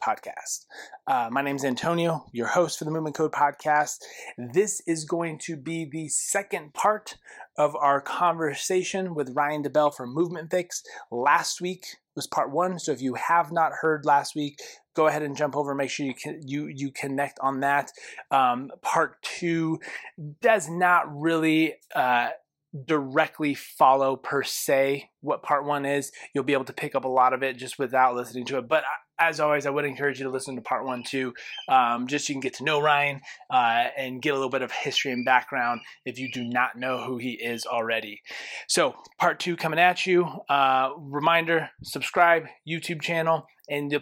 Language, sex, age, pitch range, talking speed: English, male, 20-39, 135-165 Hz, 195 wpm